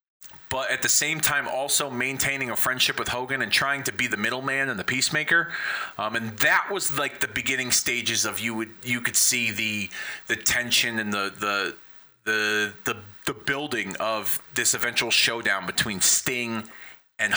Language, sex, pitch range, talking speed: English, male, 105-120 Hz, 175 wpm